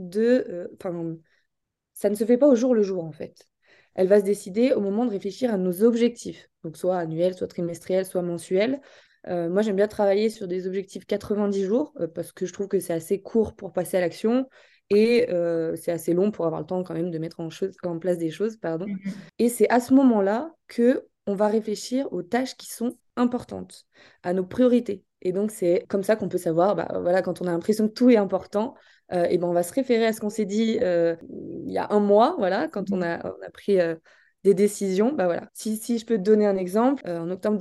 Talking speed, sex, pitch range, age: 230 wpm, female, 180-225 Hz, 20-39